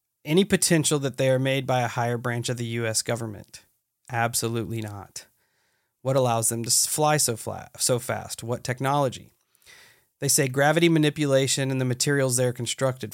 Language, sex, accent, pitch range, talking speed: English, male, American, 120-145 Hz, 170 wpm